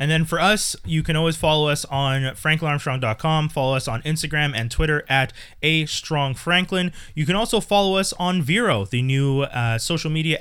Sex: male